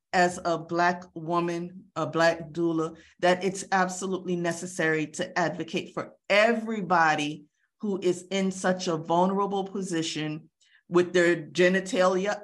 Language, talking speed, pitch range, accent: English, 120 wpm, 160-185 Hz, American